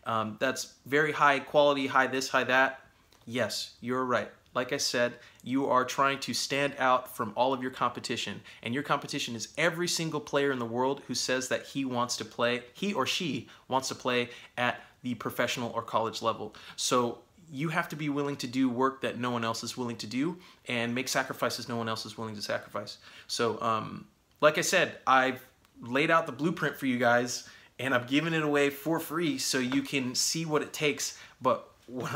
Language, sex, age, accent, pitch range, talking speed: English, male, 30-49, American, 120-145 Hz, 205 wpm